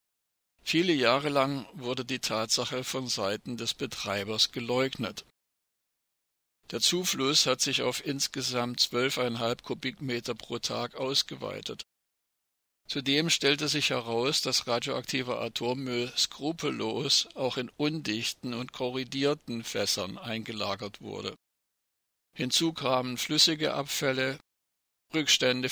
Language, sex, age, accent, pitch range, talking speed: German, male, 50-69, German, 120-140 Hz, 100 wpm